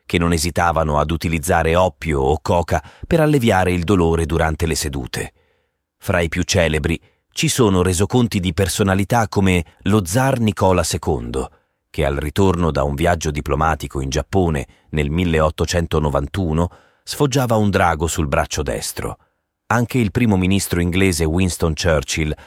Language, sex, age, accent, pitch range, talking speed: Italian, male, 30-49, native, 80-100 Hz, 140 wpm